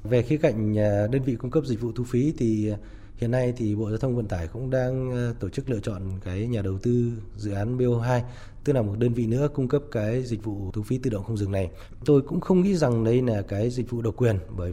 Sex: male